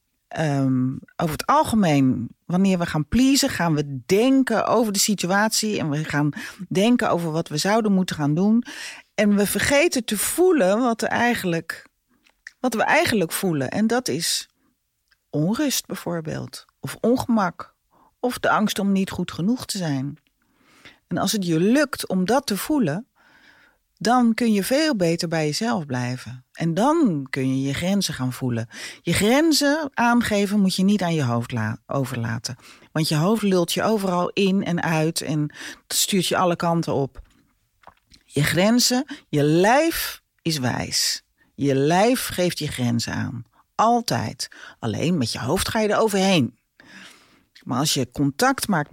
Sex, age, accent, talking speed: female, 40-59, Dutch, 155 wpm